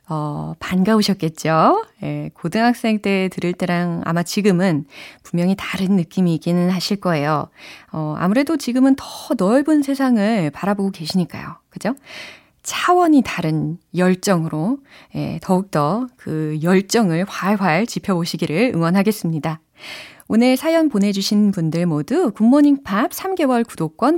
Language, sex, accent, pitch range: Korean, female, native, 175-260 Hz